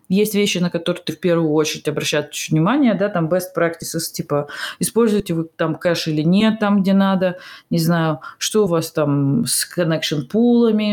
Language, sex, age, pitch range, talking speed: Russian, female, 20-39, 170-225 Hz, 180 wpm